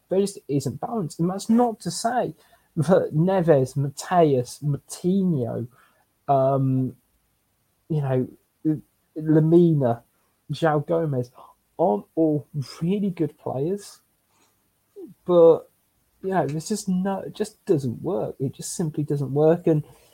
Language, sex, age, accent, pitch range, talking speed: English, male, 20-39, British, 135-180 Hz, 115 wpm